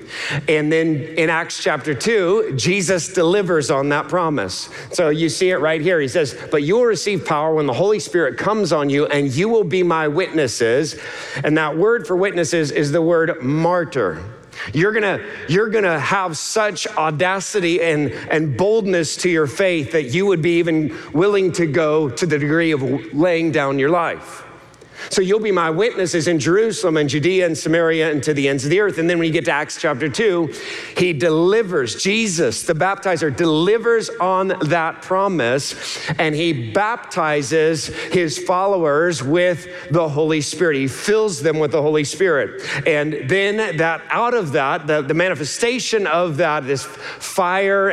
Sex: male